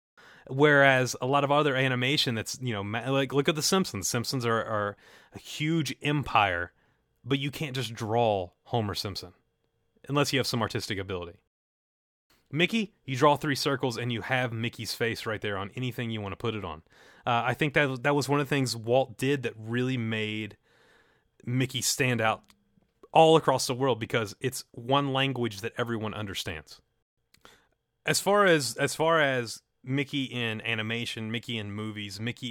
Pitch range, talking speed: 110-135 Hz, 175 wpm